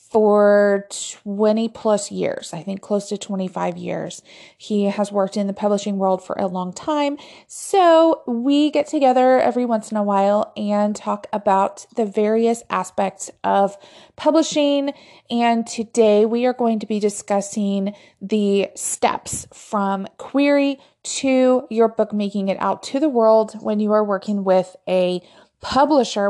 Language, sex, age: English, female, 30-49